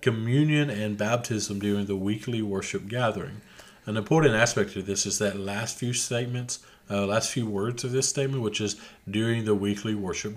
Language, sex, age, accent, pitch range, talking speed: English, male, 40-59, American, 100-120 Hz, 180 wpm